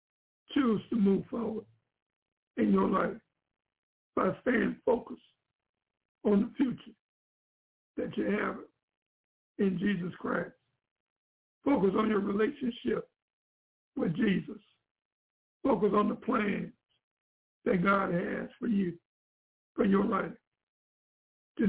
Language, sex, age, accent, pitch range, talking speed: English, male, 60-79, American, 195-235 Hz, 105 wpm